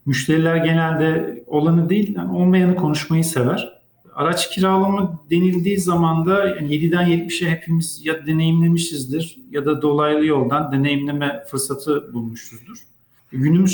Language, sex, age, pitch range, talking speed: Turkish, male, 50-69, 140-175 Hz, 110 wpm